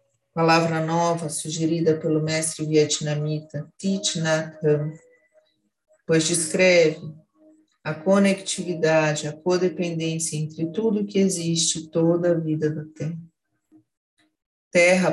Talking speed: 100 wpm